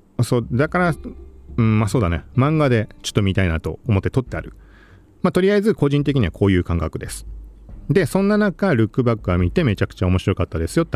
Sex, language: male, Japanese